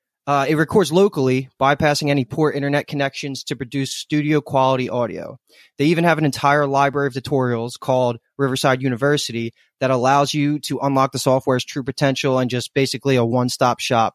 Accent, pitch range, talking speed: American, 130-150 Hz, 170 wpm